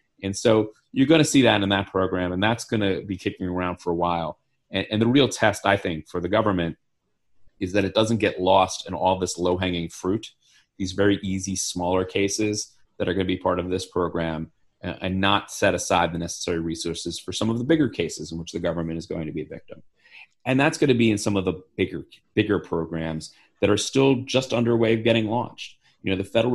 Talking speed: 235 wpm